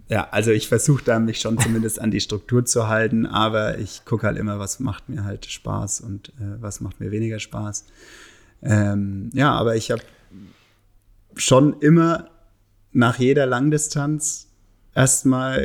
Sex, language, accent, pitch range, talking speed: male, German, German, 105-120 Hz, 155 wpm